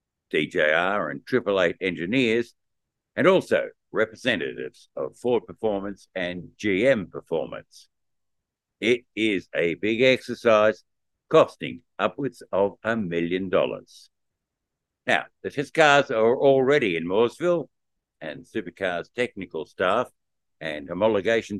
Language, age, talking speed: English, 60-79, 105 wpm